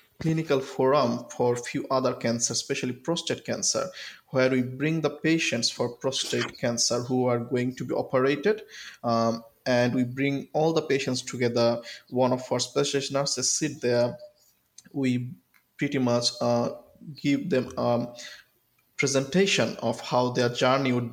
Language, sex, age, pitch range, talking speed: English, male, 20-39, 120-140 Hz, 150 wpm